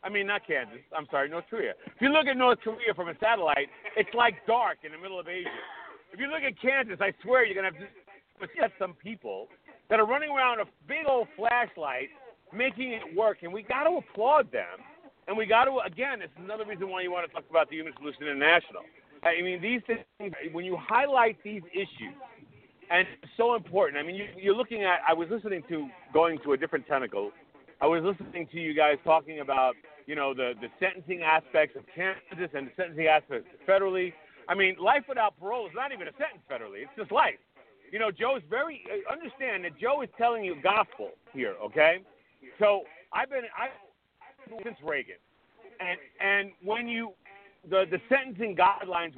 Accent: American